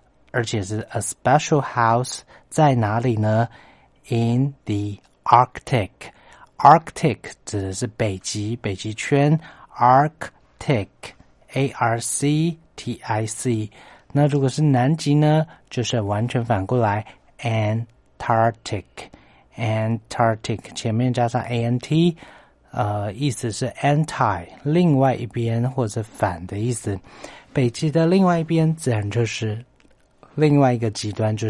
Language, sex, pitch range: Chinese, male, 105-135 Hz